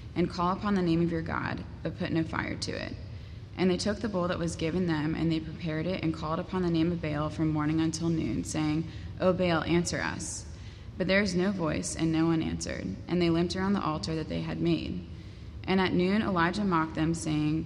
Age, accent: 20-39, American